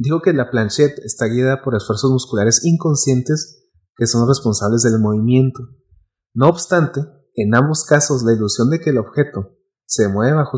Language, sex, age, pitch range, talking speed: Spanish, male, 30-49, 115-160 Hz, 165 wpm